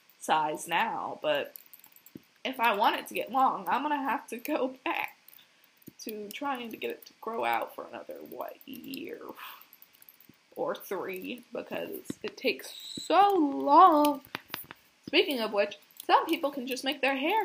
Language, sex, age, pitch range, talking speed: English, female, 10-29, 220-305 Hz, 155 wpm